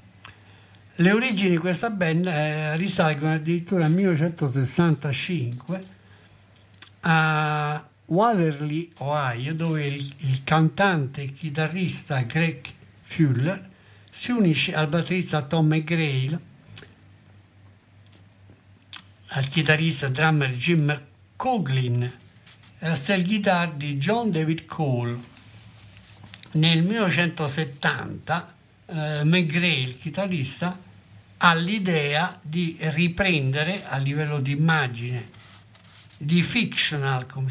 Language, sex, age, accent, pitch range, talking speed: Italian, male, 60-79, native, 115-165 Hz, 90 wpm